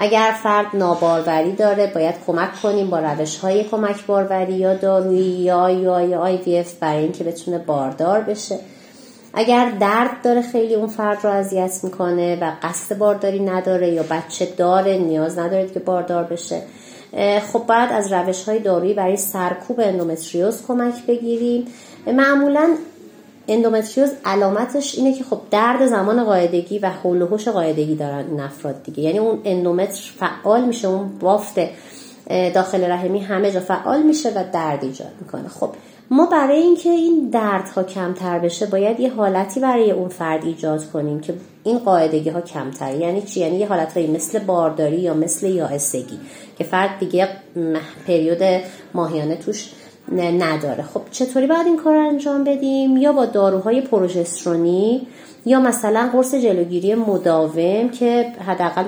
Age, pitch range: 30-49, 170-230 Hz